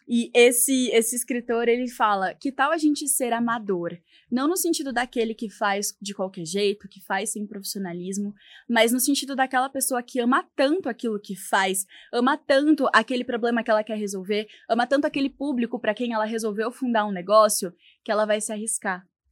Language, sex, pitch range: Portuguese, female, 210-265 Hz